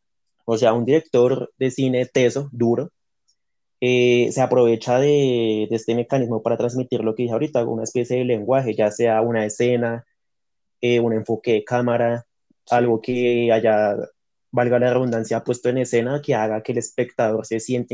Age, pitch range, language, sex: 20-39, 115-135 Hz, Spanish, male